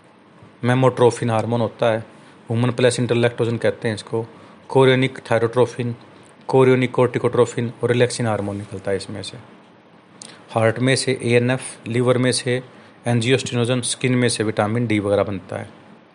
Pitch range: 110-130 Hz